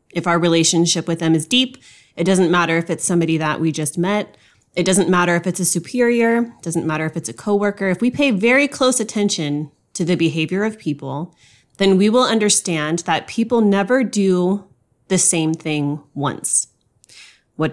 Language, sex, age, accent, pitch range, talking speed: English, female, 30-49, American, 155-200 Hz, 185 wpm